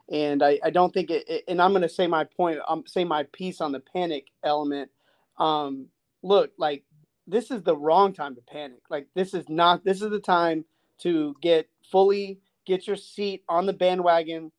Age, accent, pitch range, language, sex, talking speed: 30-49, American, 155-195 Hz, English, male, 200 wpm